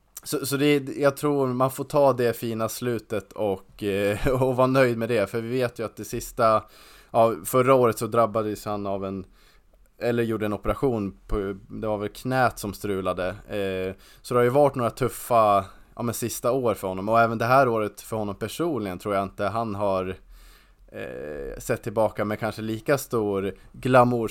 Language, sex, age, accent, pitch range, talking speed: Swedish, male, 20-39, Norwegian, 100-125 Hz, 190 wpm